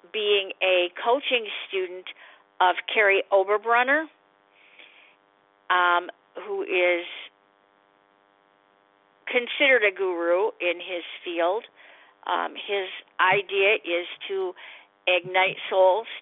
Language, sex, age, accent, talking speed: English, female, 50-69, American, 85 wpm